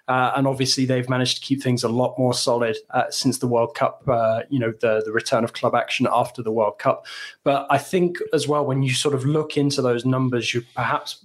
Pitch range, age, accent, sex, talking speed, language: 120-140 Hz, 20-39, British, male, 240 wpm, English